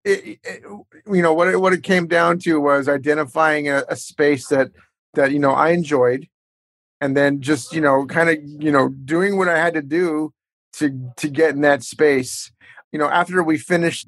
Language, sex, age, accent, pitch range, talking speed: English, male, 30-49, American, 130-160 Hz, 190 wpm